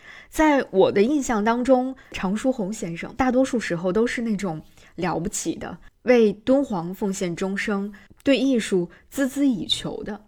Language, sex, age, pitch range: Chinese, female, 20-39, 190-260 Hz